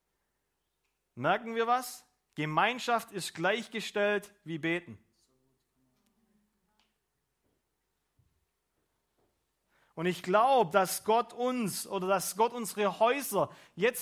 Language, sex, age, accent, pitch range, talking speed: German, male, 40-59, German, 205-245 Hz, 85 wpm